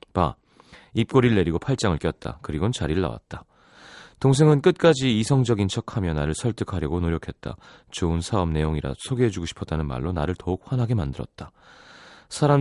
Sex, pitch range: male, 85-120 Hz